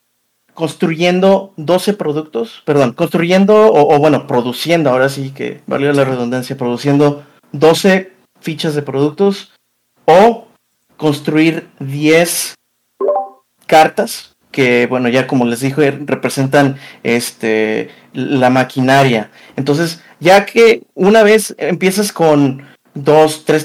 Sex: male